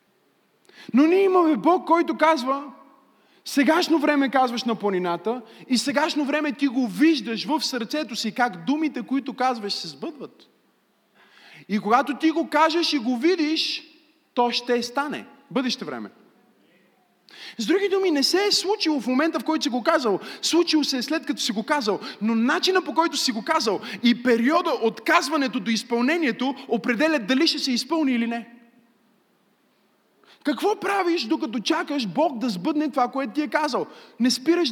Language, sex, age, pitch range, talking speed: Bulgarian, male, 20-39, 235-315 Hz, 165 wpm